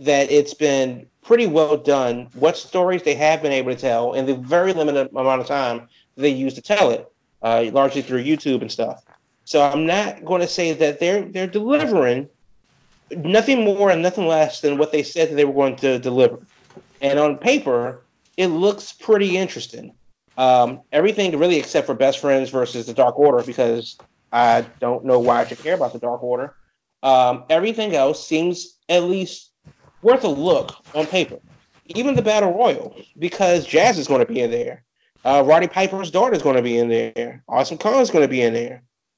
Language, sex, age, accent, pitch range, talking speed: English, male, 30-49, American, 130-185 Hz, 200 wpm